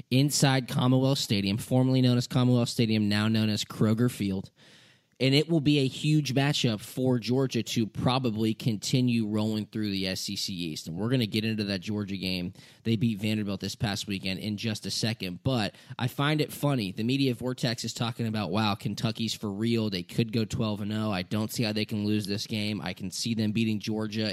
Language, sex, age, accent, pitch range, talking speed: English, male, 10-29, American, 105-130 Hz, 205 wpm